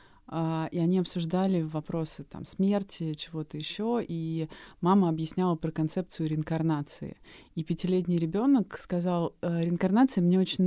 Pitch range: 165-195 Hz